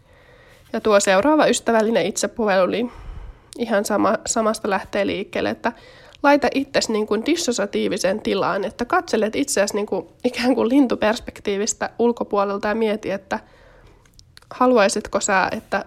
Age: 20-39